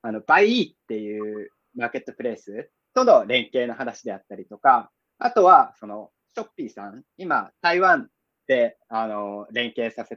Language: Japanese